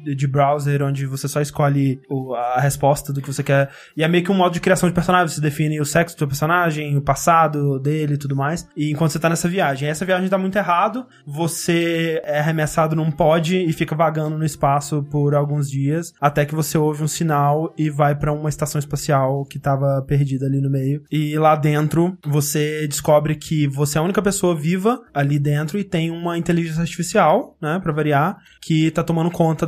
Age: 20-39